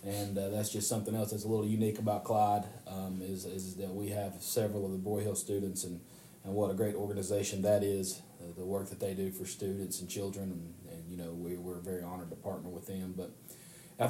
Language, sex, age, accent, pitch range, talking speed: English, male, 30-49, American, 100-120 Hz, 240 wpm